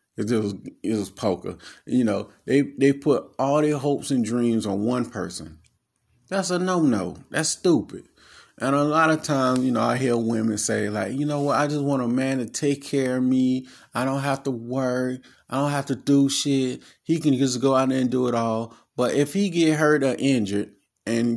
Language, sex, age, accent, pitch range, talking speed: English, male, 30-49, American, 115-160 Hz, 215 wpm